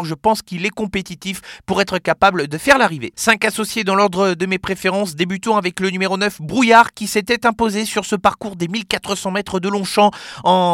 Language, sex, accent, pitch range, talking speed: French, male, French, 185-220 Hz, 200 wpm